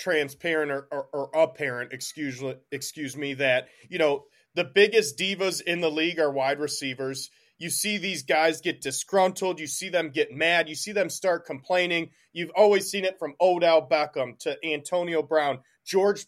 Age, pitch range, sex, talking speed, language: 30-49, 150-185 Hz, male, 175 wpm, English